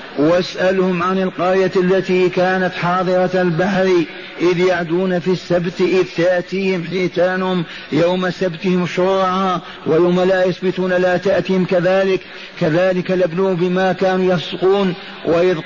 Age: 50-69